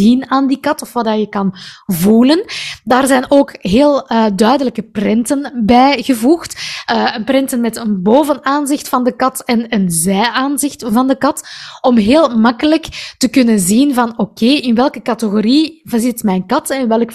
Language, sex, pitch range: Dutch, female, 215-265 Hz